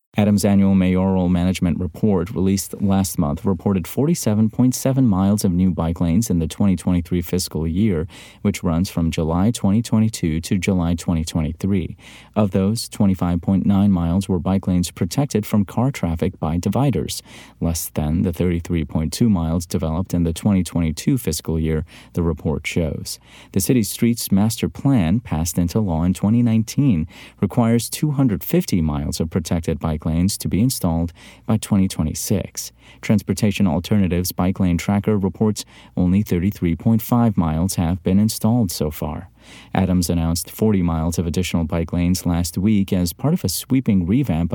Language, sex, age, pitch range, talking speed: English, male, 30-49, 85-110 Hz, 145 wpm